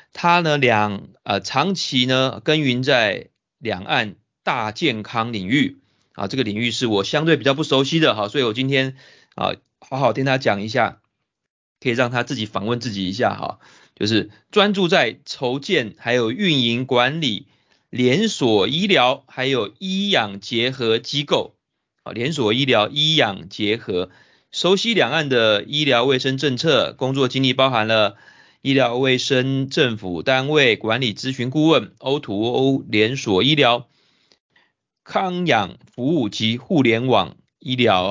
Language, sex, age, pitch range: Chinese, male, 30-49, 110-140 Hz